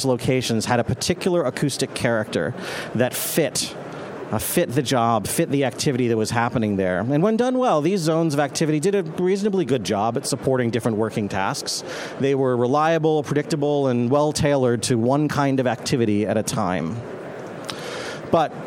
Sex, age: male, 40-59